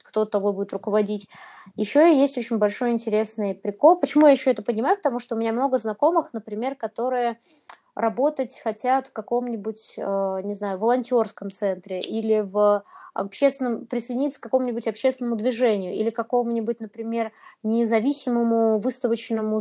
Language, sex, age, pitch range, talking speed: Russian, female, 20-39, 215-255 Hz, 135 wpm